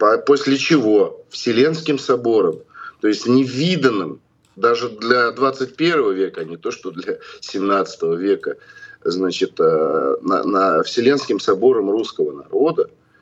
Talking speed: 110 wpm